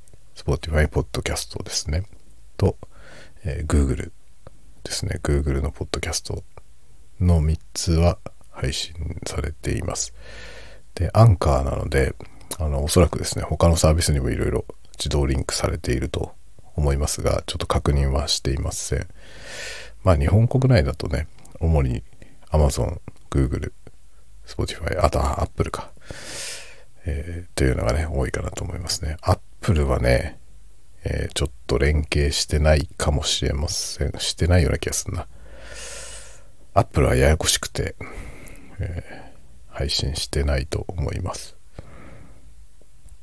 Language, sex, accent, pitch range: Japanese, male, native, 70-90 Hz